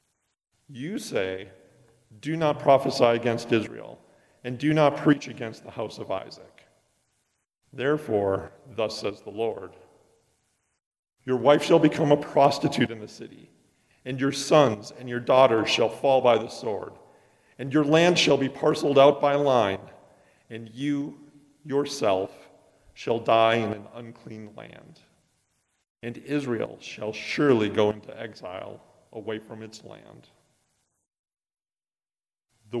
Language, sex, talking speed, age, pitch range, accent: English, male, 130 wpm, 40-59, 115-140 Hz, American